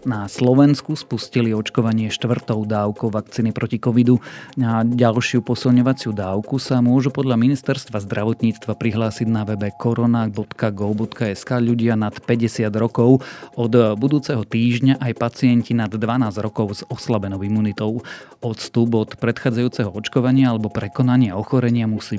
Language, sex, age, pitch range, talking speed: Slovak, male, 30-49, 105-120 Hz, 120 wpm